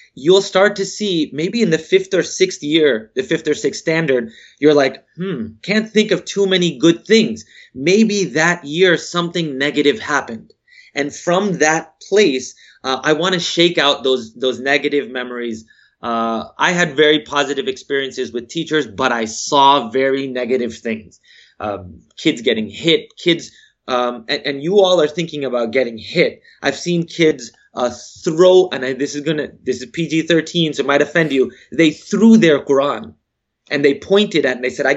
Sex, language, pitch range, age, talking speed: male, English, 130-180 Hz, 30-49, 180 wpm